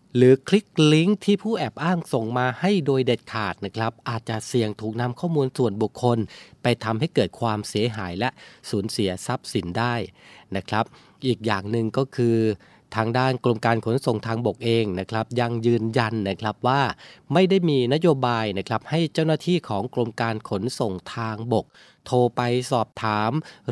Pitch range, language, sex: 110-140 Hz, Thai, male